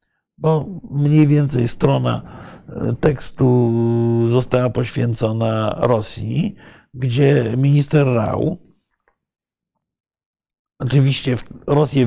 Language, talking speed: Polish, 65 wpm